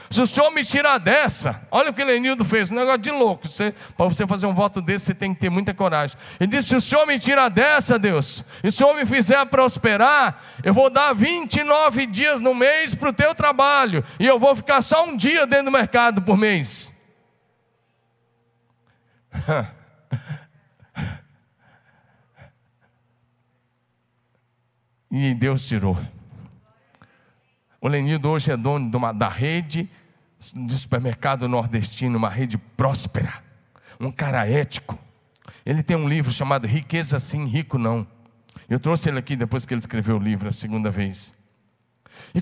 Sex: male